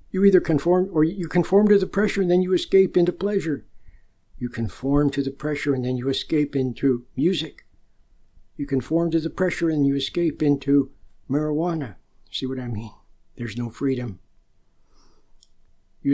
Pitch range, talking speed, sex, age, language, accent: 140-175 Hz, 165 wpm, male, 60-79, English, American